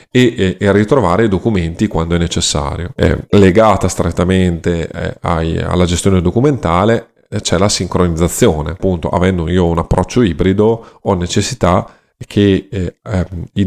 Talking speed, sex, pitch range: 110 wpm, male, 85-110 Hz